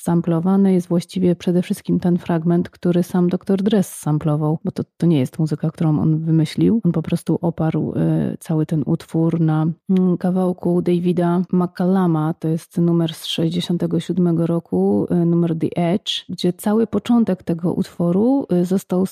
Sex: female